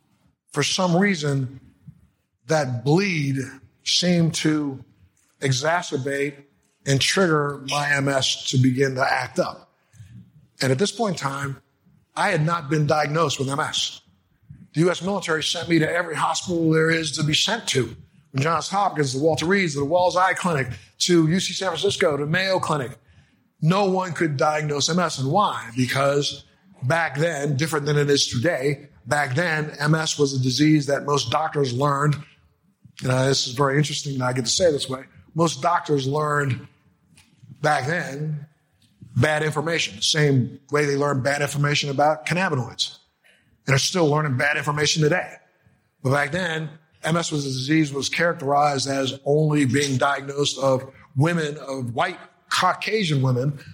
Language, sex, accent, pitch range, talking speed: English, male, American, 135-160 Hz, 160 wpm